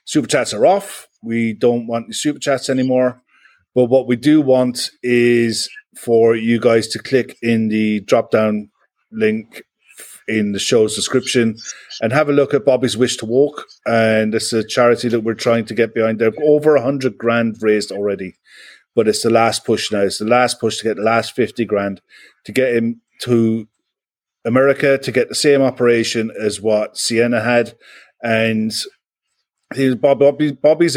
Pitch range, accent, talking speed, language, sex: 110-135 Hz, British, 170 wpm, English, male